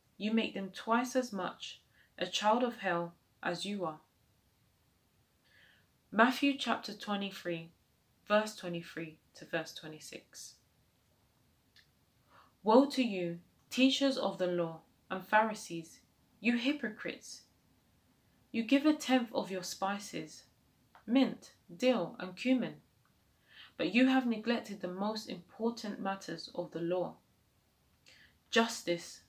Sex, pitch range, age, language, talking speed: female, 180-245 Hz, 20-39, English, 115 wpm